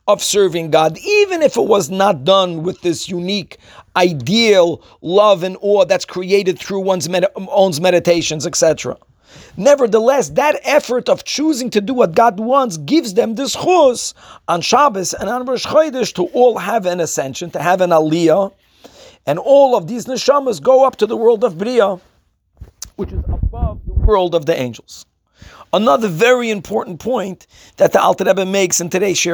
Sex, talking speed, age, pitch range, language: male, 170 wpm, 40-59, 175-220 Hz, English